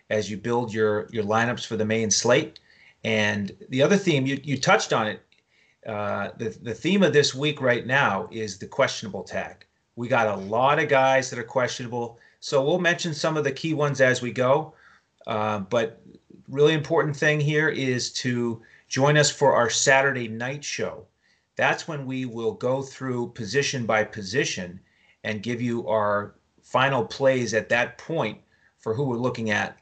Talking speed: 180 wpm